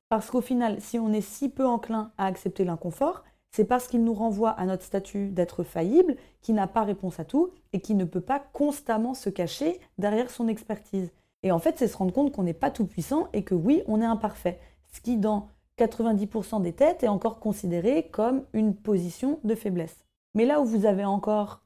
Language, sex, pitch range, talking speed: French, female, 190-235 Hz, 215 wpm